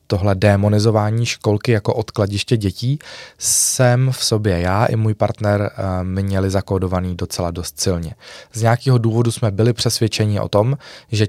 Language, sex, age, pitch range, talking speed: Czech, male, 20-39, 100-125 Hz, 145 wpm